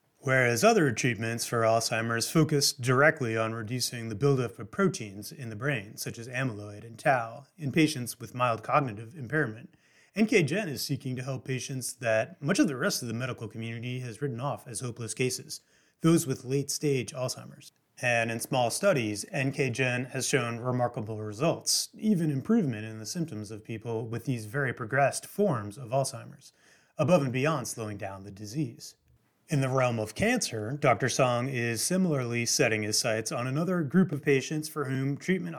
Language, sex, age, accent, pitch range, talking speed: English, male, 30-49, American, 115-145 Hz, 170 wpm